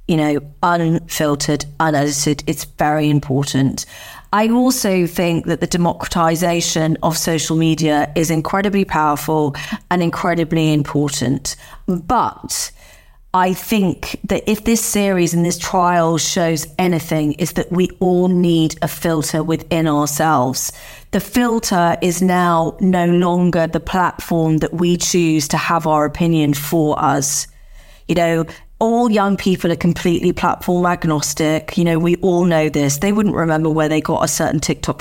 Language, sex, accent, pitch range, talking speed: English, female, British, 160-180 Hz, 145 wpm